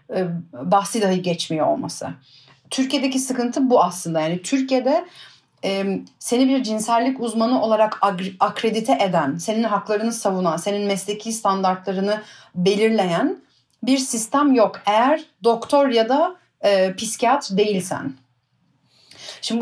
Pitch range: 190-250 Hz